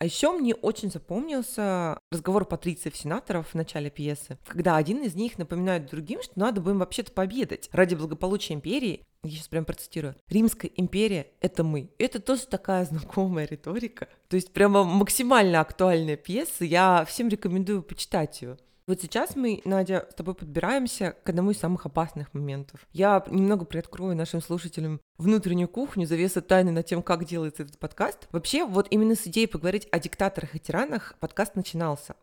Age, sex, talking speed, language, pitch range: 20-39, female, 165 wpm, Russian, 170-210 Hz